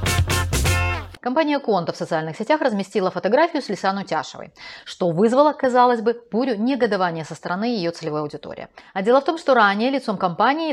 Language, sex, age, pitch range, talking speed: Russian, female, 30-49, 180-250 Hz, 160 wpm